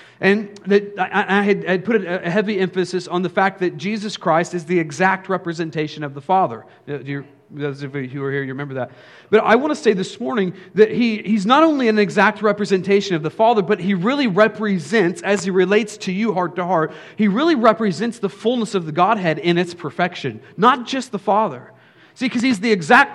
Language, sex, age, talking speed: English, male, 40-59, 215 wpm